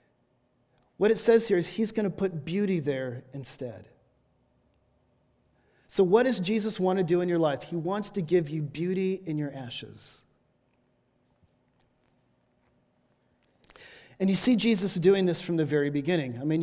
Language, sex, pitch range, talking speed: English, male, 145-190 Hz, 155 wpm